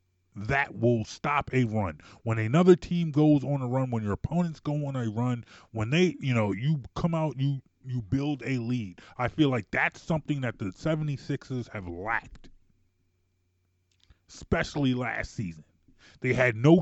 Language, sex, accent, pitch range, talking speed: English, male, American, 95-140 Hz, 170 wpm